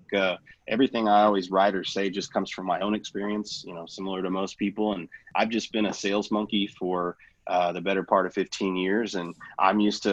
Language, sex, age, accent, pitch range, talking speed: English, male, 30-49, American, 95-110 Hz, 225 wpm